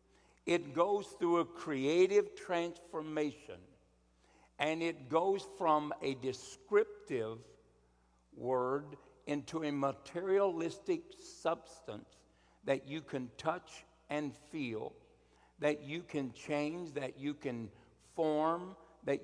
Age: 60-79